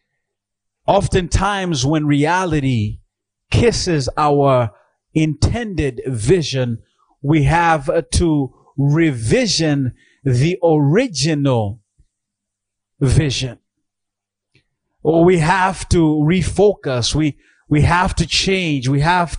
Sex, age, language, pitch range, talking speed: male, 30-49, English, 130-180 Hz, 80 wpm